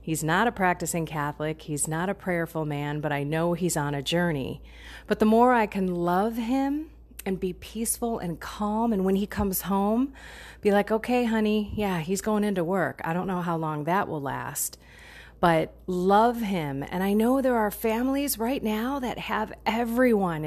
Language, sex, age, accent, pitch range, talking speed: English, female, 30-49, American, 150-210 Hz, 190 wpm